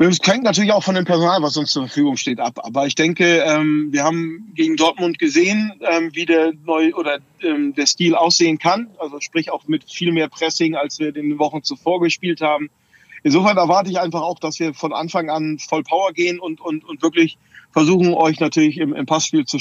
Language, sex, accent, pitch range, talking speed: German, male, German, 145-170 Hz, 205 wpm